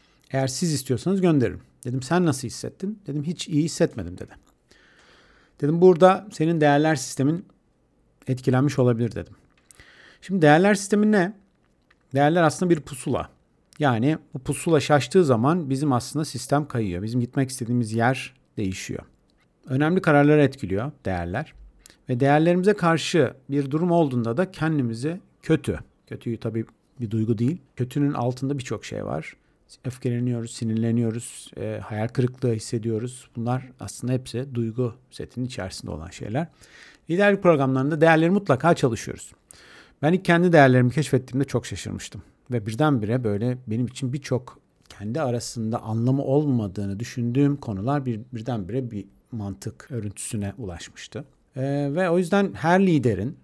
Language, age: Turkish, 50-69